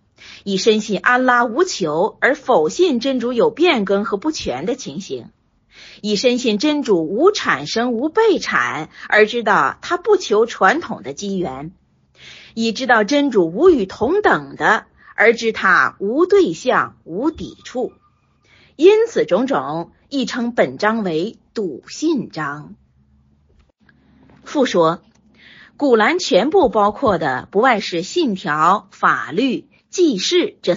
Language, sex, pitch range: Chinese, female, 185-305 Hz